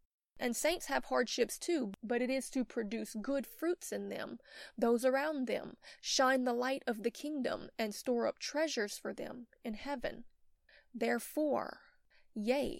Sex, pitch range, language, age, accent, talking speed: female, 220-270 Hz, English, 20-39, American, 155 wpm